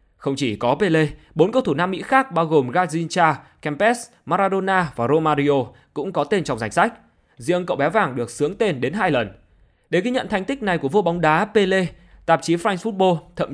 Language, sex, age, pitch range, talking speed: Vietnamese, male, 20-39, 140-215 Hz, 215 wpm